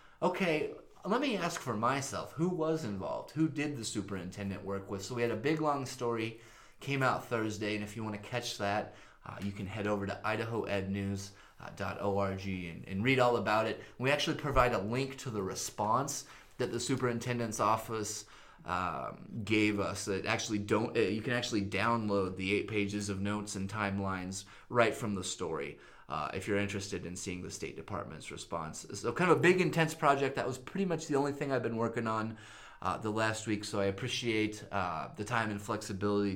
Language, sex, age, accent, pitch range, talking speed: English, male, 30-49, American, 100-130 Hz, 200 wpm